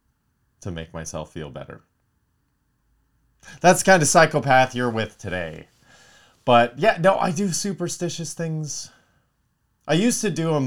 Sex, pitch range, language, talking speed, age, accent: male, 90-125 Hz, English, 140 wpm, 30-49, American